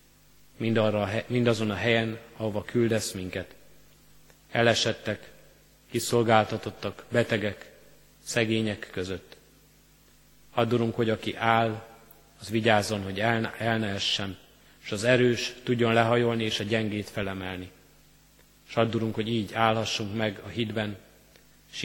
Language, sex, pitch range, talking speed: Hungarian, male, 105-115 Hz, 110 wpm